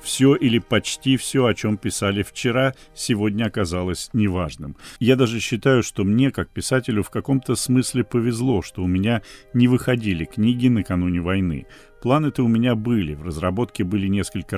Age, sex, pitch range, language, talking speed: 40-59, male, 100-130 Hz, Russian, 155 wpm